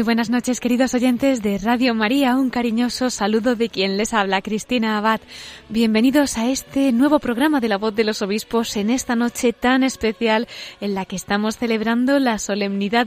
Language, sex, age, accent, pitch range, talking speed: Spanish, female, 20-39, Spanish, 210-250 Hz, 185 wpm